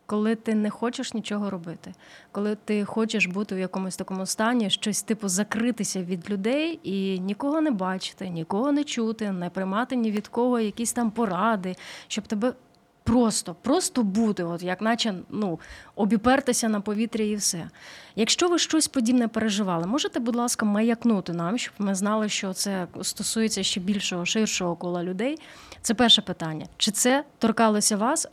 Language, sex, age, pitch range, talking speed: Ukrainian, female, 30-49, 185-230 Hz, 160 wpm